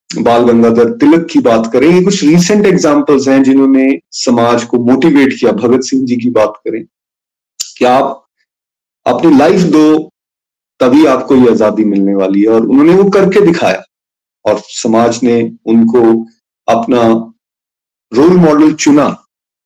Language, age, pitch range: Hindi, 30-49, 115-170 Hz